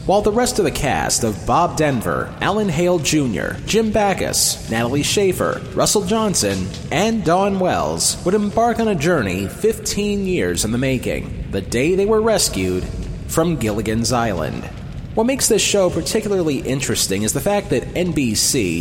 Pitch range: 115-185 Hz